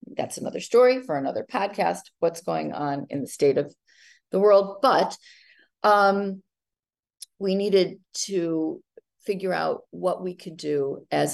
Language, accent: English, American